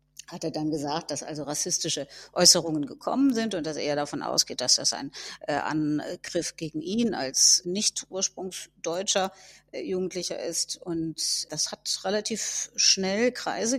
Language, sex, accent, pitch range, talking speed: German, female, German, 170-200 Hz, 140 wpm